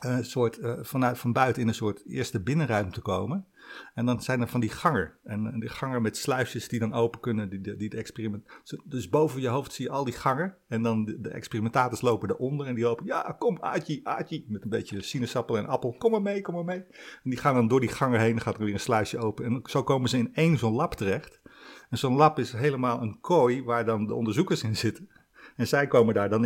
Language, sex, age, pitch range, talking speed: Dutch, male, 50-69, 105-125 Hz, 250 wpm